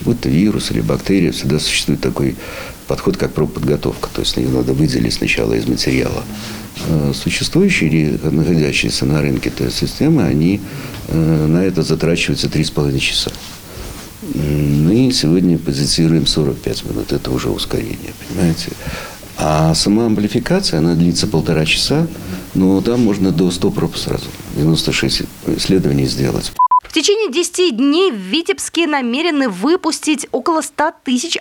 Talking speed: 130 wpm